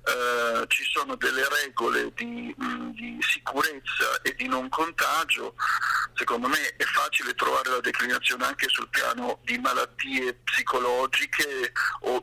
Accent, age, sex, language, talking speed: native, 50-69, male, Italian, 130 wpm